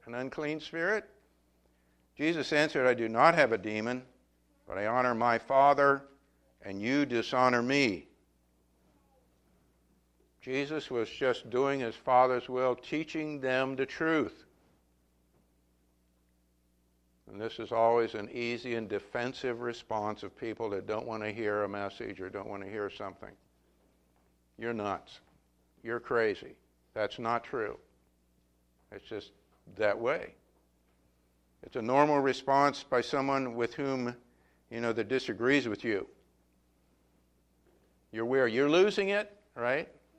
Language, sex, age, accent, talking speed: English, male, 60-79, American, 130 wpm